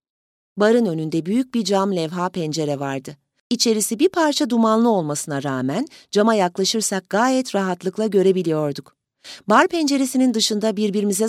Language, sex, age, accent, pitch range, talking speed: Turkish, female, 40-59, native, 165-235 Hz, 120 wpm